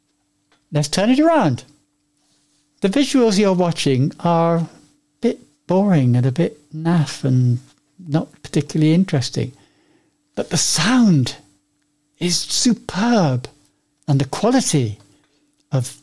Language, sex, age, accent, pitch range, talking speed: English, male, 60-79, British, 130-160 Hz, 110 wpm